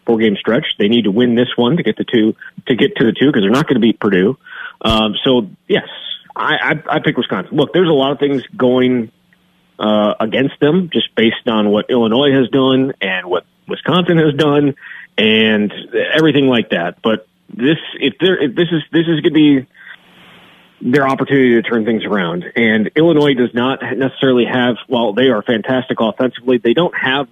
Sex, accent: male, American